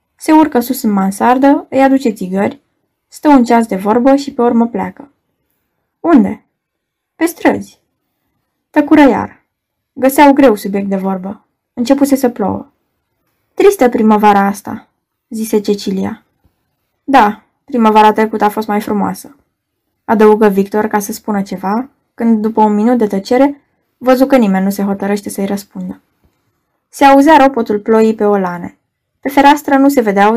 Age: 10-29